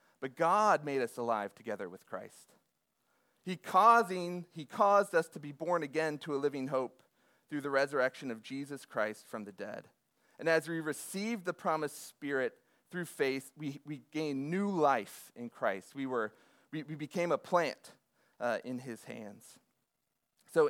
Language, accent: English, American